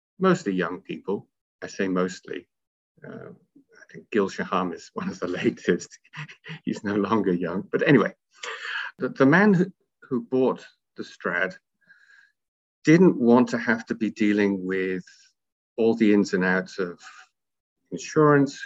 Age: 50-69